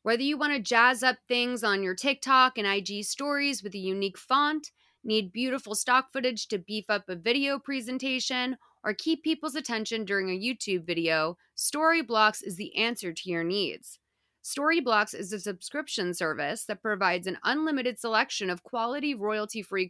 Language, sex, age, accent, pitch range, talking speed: English, female, 30-49, American, 195-255 Hz, 165 wpm